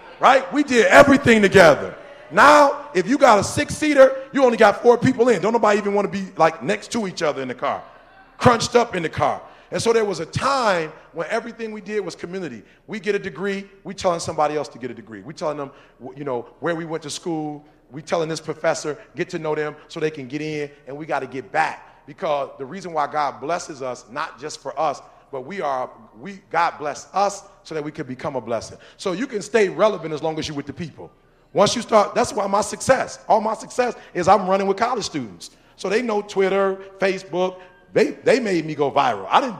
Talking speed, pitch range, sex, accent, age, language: 235 wpm, 150-220 Hz, male, American, 30-49, English